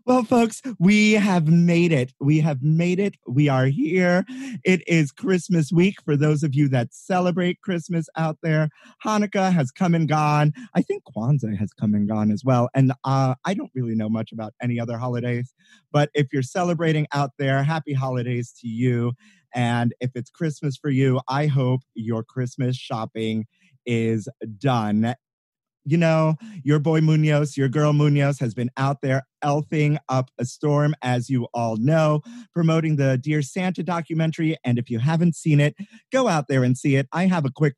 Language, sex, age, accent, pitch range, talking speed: English, male, 30-49, American, 120-160 Hz, 185 wpm